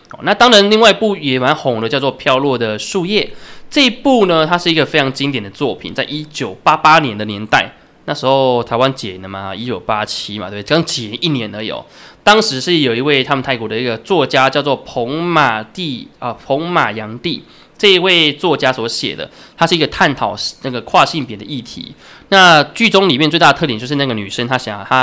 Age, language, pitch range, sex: 20-39, Chinese, 115-155 Hz, male